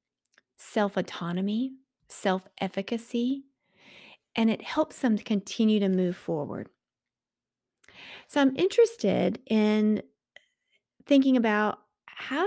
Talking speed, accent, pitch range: 85 wpm, American, 205-255 Hz